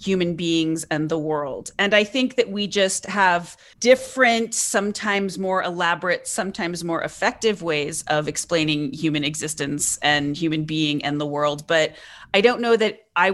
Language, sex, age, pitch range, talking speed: English, female, 30-49, 165-210 Hz, 160 wpm